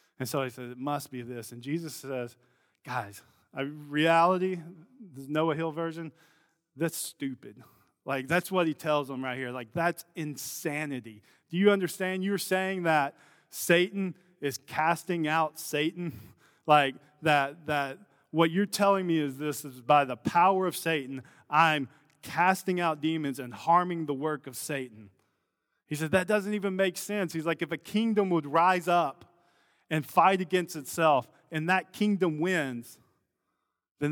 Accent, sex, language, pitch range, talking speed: American, male, English, 140-180 Hz, 160 wpm